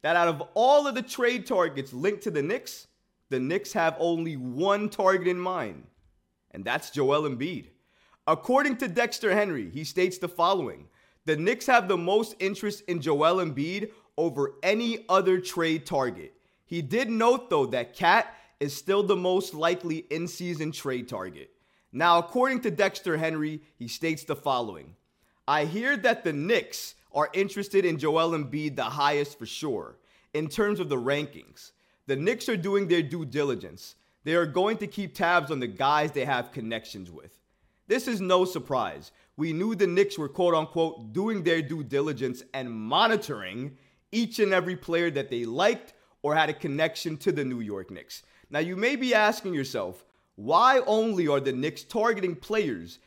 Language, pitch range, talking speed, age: English, 145-205 Hz, 175 wpm, 30-49